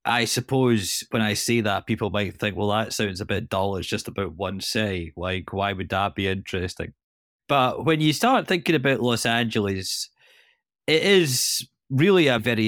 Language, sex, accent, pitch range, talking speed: English, male, British, 100-115 Hz, 185 wpm